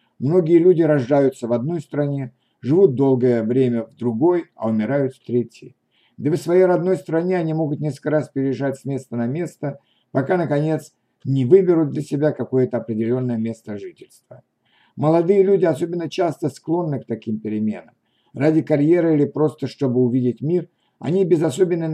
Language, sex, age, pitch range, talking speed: Russian, male, 60-79, 130-165 Hz, 155 wpm